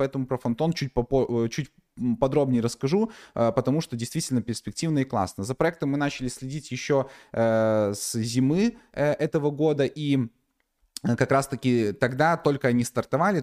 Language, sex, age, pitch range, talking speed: Russian, male, 20-39, 110-135 Hz, 135 wpm